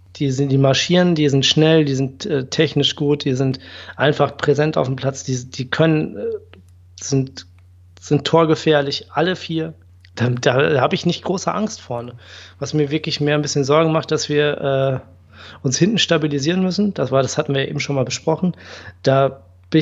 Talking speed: 180 wpm